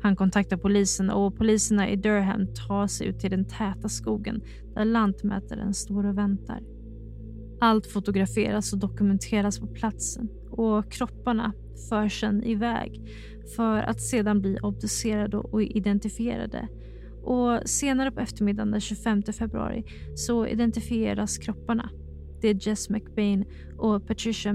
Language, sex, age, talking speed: Swedish, female, 20-39, 130 wpm